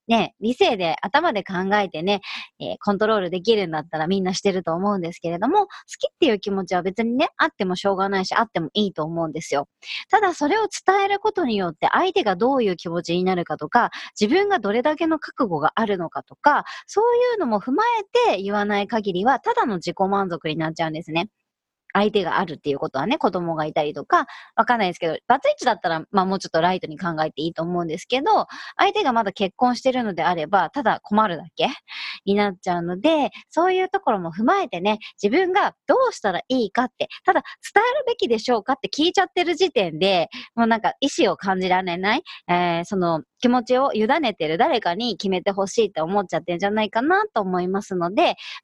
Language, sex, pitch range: Japanese, male, 180-285 Hz